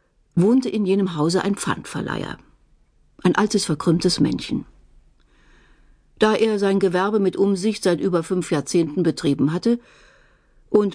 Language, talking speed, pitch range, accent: German, 125 wpm, 165-205 Hz, German